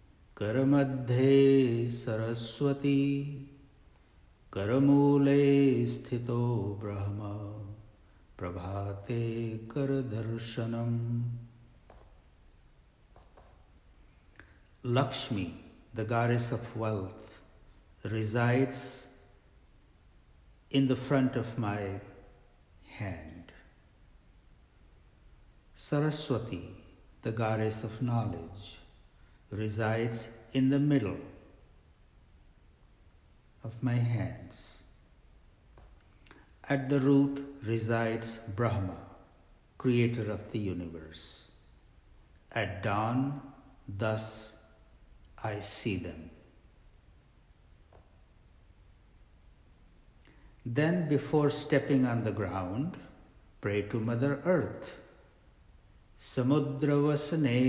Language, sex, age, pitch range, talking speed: English, male, 60-79, 100-130 Hz, 60 wpm